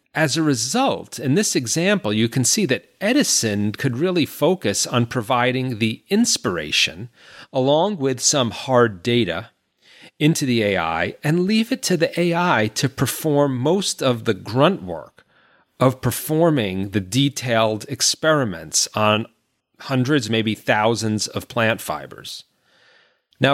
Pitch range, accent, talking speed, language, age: 110-140 Hz, American, 135 wpm, English, 40-59